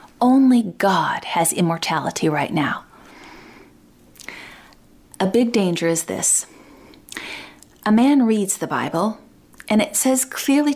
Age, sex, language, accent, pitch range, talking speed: 30-49, female, English, American, 185-235 Hz, 110 wpm